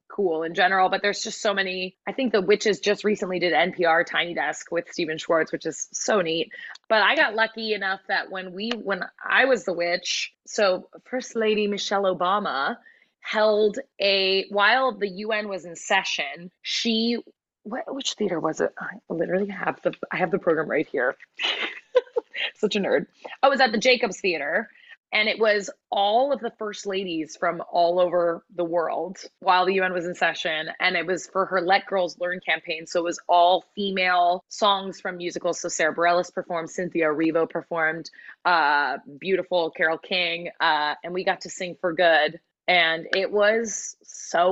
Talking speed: 180 wpm